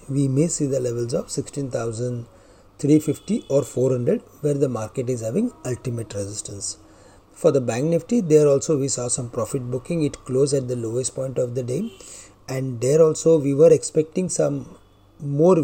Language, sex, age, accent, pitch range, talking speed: English, male, 30-49, Indian, 120-150 Hz, 170 wpm